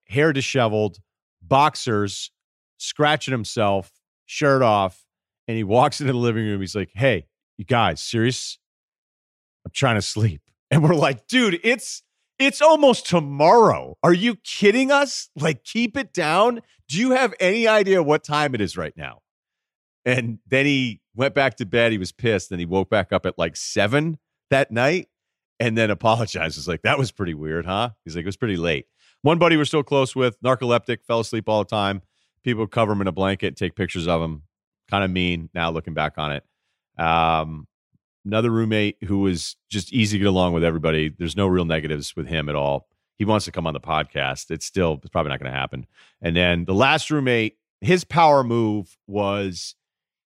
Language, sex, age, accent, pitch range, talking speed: English, male, 40-59, American, 90-135 Hz, 190 wpm